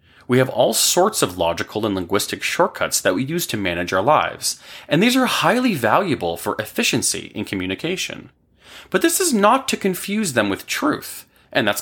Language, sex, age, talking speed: English, male, 30-49, 185 wpm